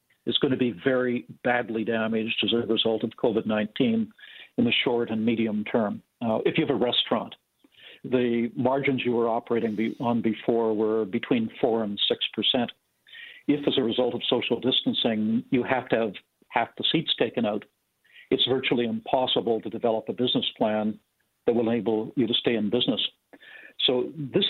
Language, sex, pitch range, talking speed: English, male, 110-130 Hz, 175 wpm